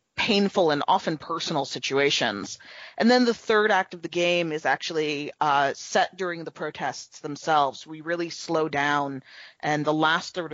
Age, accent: 30-49, American